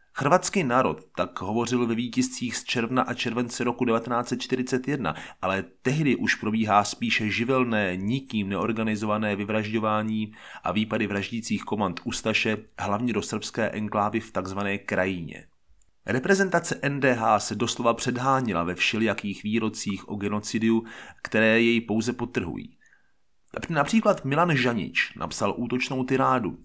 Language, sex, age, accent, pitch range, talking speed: Czech, male, 30-49, native, 110-130 Hz, 120 wpm